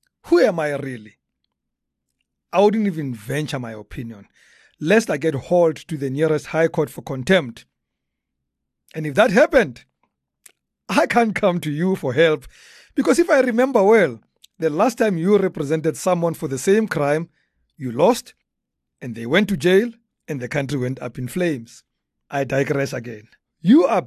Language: English